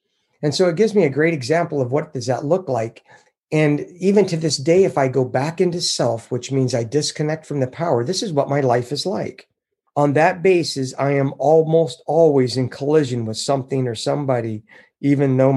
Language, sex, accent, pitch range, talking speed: English, male, American, 130-160 Hz, 210 wpm